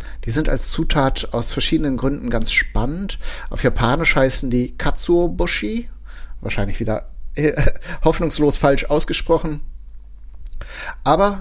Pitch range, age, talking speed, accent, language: 120-150 Hz, 60-79, 110 wpm, German, German